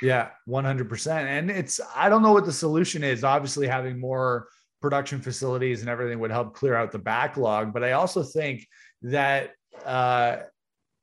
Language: English